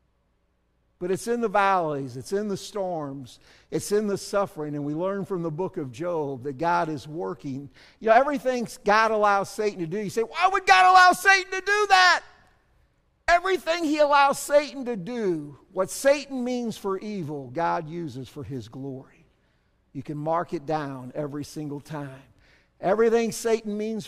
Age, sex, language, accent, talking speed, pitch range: 50-69, male, English, American, 175 wpm, 160-240 Hz